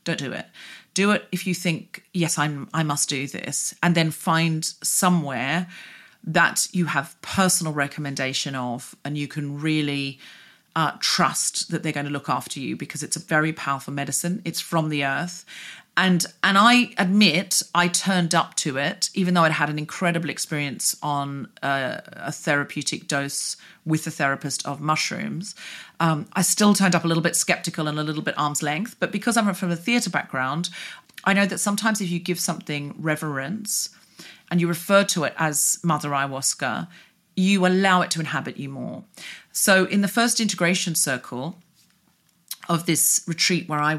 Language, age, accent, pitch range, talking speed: English, 40-59, British, 140-180 Hz, 175 wpm